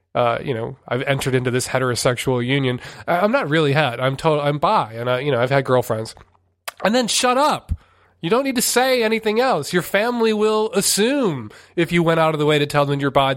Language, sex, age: English, male, 20-39